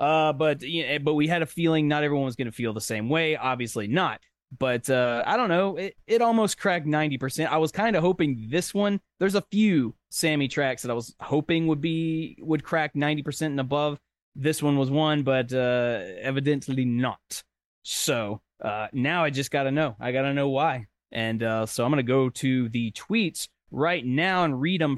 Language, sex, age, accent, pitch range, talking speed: English, male, 20-39, American, 125-165 Hz, 220 wpm